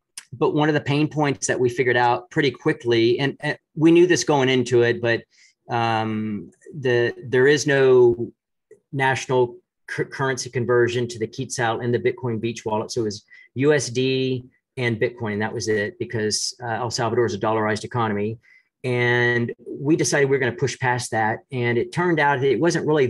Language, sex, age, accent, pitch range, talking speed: English, male, 40-59, American, 115-140 Hz, 190 wpm